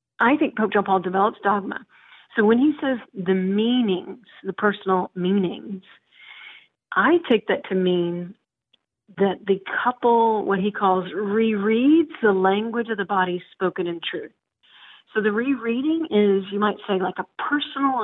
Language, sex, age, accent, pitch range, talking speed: English, female, 40-59, American, 190-235 Hz, 155 wpm